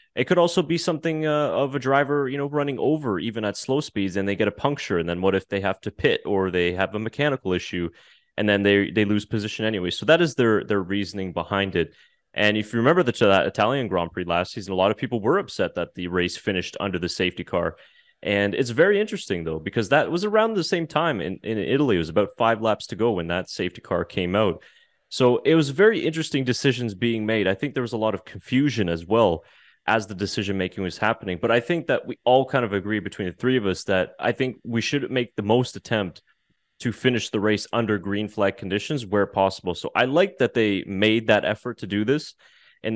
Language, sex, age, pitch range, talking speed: English, male, 20-39, 100-130 Hz, 240 wpm